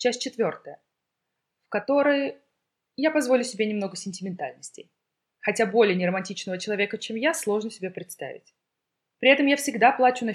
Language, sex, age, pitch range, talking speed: Russian, female, 20-39, 175-255 Hz, 140 wpm